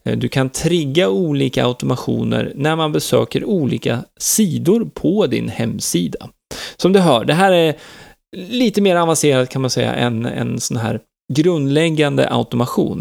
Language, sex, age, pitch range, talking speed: Swedish, male, 30-49, 125-165 Hz, 145 wpm